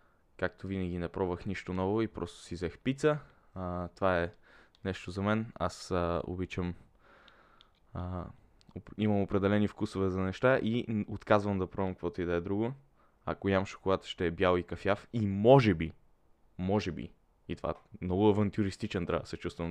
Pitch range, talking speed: 90-105 Hz, 175 wpm